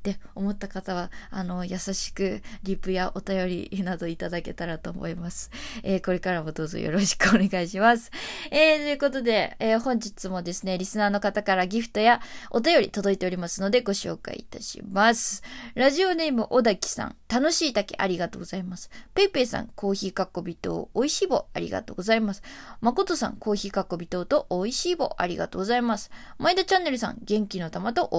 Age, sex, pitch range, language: 20-39, female, 195-270 Hz, Japanese